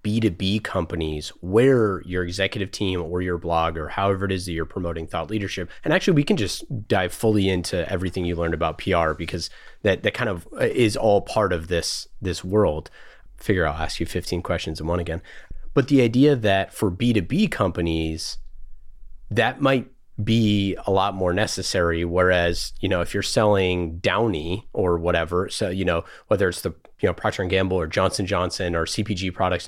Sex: male